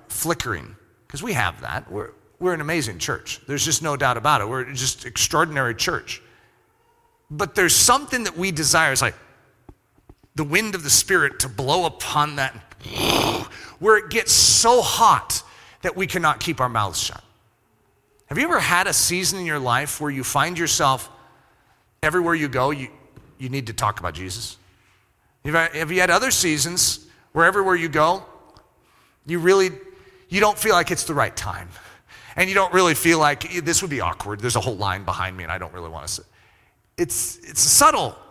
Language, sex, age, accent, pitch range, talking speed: English, male, 40-59, American, 110-175 Hz, 185 wpm